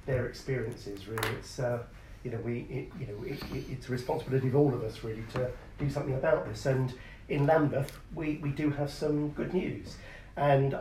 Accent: British